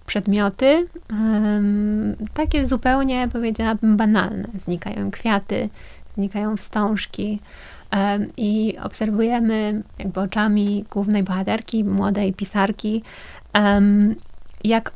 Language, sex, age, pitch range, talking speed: Polish, female, 20-39, 200-220 Hz, 85 wpm